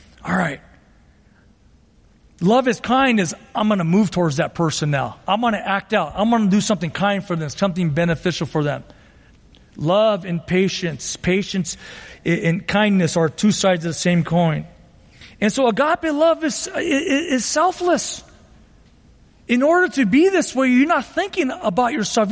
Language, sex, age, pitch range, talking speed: English, male, 40-59, 185-255 Hz, 165 wpm